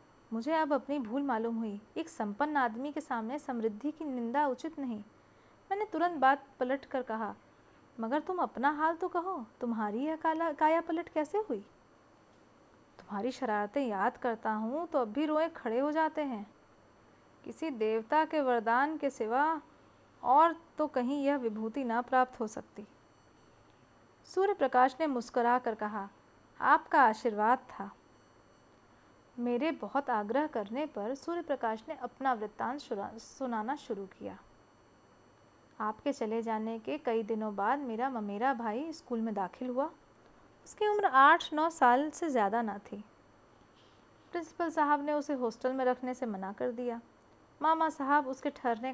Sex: female